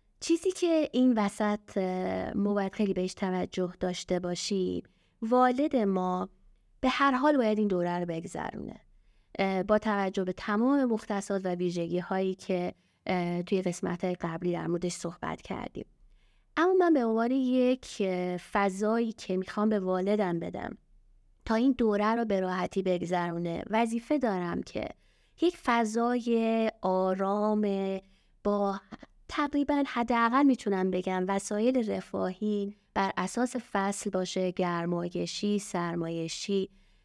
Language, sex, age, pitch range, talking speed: Persian, female, 20-39, 185-235 Hz, 120 wpm